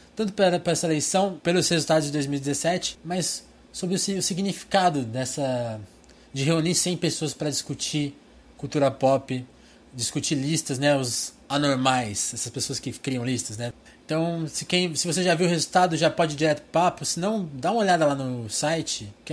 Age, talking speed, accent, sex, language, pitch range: 20-39, 170 wpm, Brazilian, male, Portuguese, 140-170 Hz